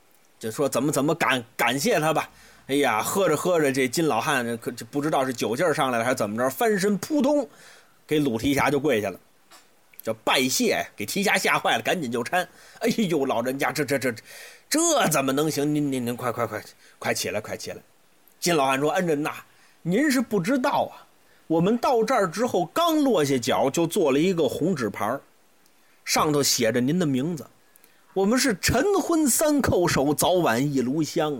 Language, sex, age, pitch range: Chinese, male, 30-49, 135-225 Hz